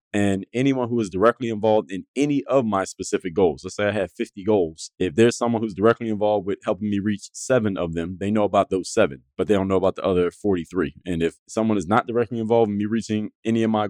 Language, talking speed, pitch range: English, 245 wpm, 90-110 Hz